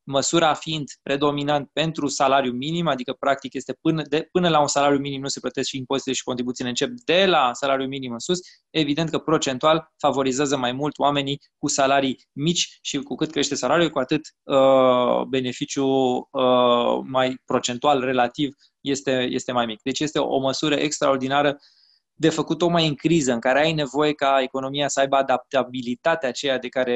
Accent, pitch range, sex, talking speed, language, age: native, 130-145 Hz, male, 180 wpm, Romanian, 20-39